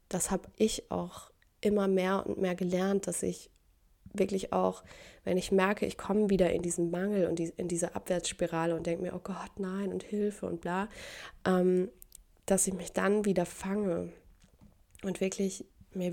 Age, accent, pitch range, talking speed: 20-39, German, 175-200 Hz, 165 wpm